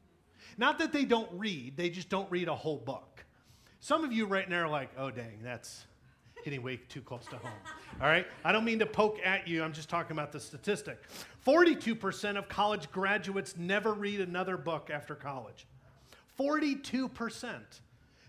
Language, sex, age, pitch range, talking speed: English, male, 40-59, 150-205 Hz, 175 wpm